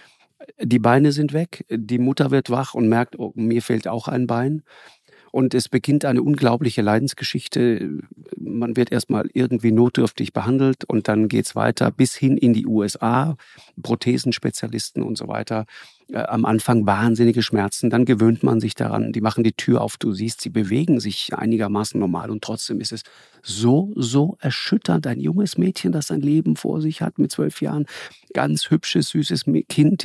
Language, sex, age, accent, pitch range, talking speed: German, male, 50-69, German, 115-145 Hz, 170 wpm